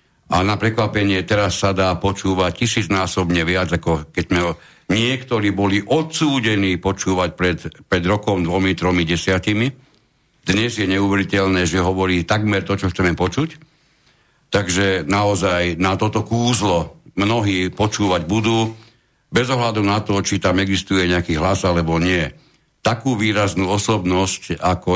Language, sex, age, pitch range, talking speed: Slovak, male, 60-79, 95-110 Hz, 130 wpm